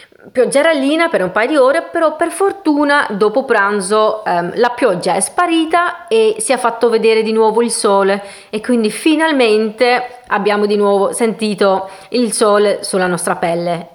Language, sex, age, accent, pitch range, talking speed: Italian, female, 30-49, native, 200-305 Hz, 165 wpm